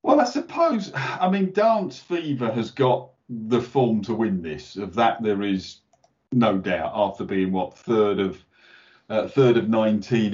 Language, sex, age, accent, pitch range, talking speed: English, male, 50-69, British, 100-125 Hz, 170 wpm